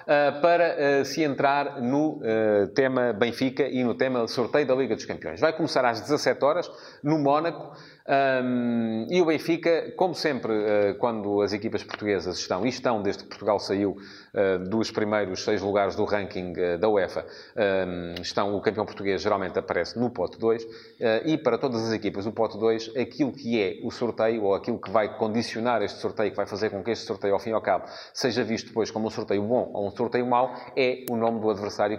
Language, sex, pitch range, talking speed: Portuguese, male, 110-145 Hz, 210 wpm